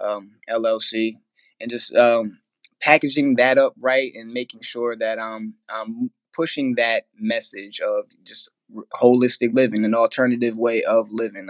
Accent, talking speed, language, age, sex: American, 145 wpm, English, 20-39, male